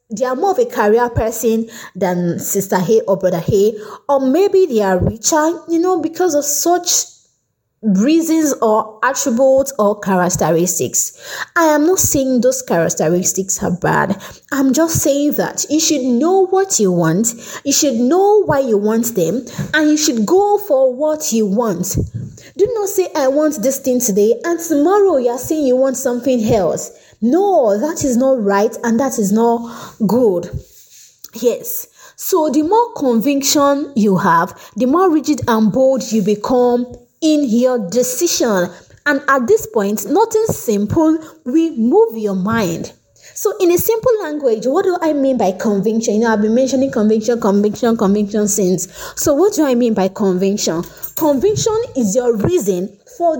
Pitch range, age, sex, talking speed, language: 210-315 Hz, 20-39, female, 165 wpm, English